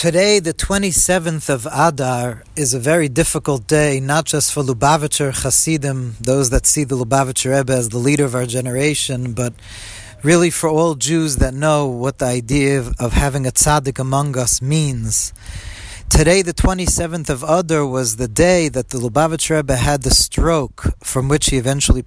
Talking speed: 170 wpm